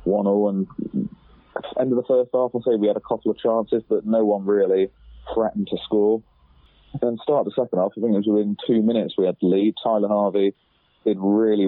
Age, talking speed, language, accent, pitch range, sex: 20-39, 215 wpm, English, British, 95-115 Hz, male